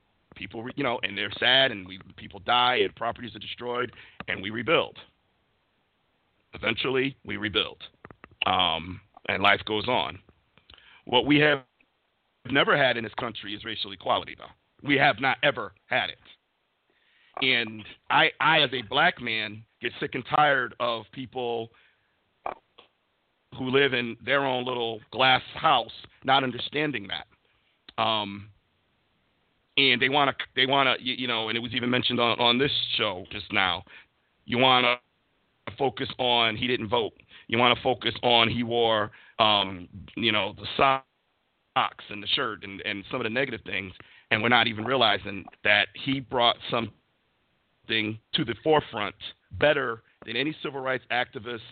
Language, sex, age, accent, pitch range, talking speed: English, male, 50-69, American, 105-125 Hz, 160 wpm